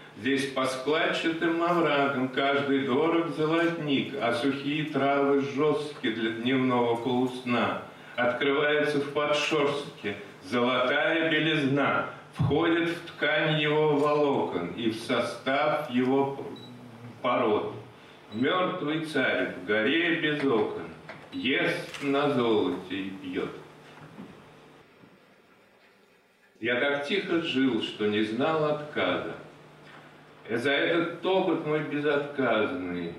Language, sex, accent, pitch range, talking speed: Russian, male, native, 130-160 Hz, 95 wpm